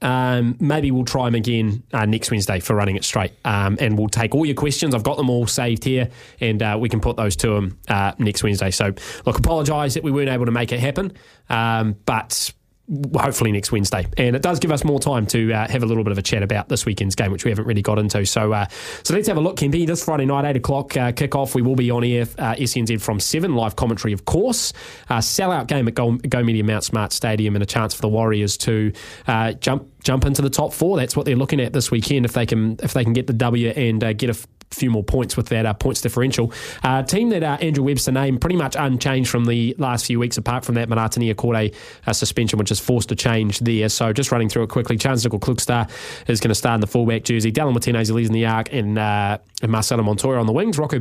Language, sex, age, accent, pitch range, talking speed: English, male, 20-39, Australian, 110-130 Hz, 260 wpm